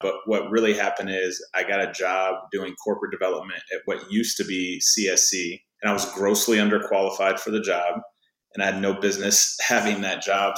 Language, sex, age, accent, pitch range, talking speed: English, male, 20-39, American, 90-105 Hz, 195 wpm